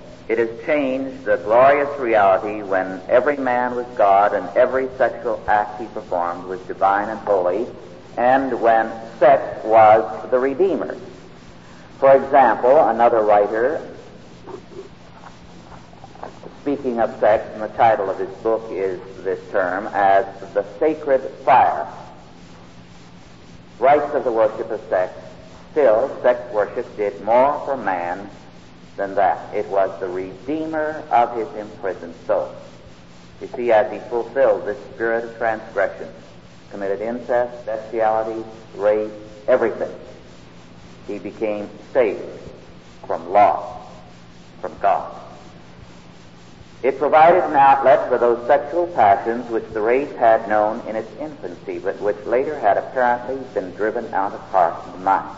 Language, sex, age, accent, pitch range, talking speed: English, male, 60-79, American, 90-120 Hz, 130 wpm